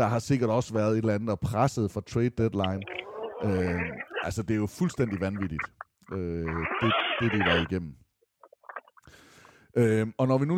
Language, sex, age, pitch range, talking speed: English, male, 30-49, 105-140 Hz, 175 wpm